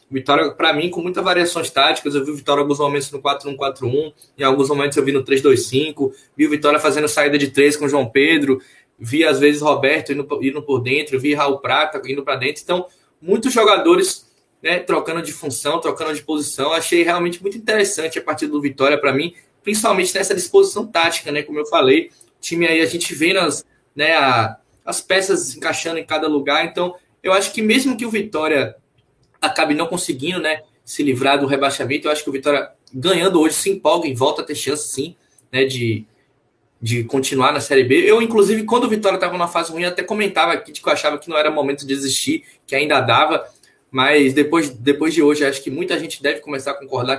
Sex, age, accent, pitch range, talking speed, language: male, 20-39, Brazilian, 140-180 Hz, 215 wpm, Portuguese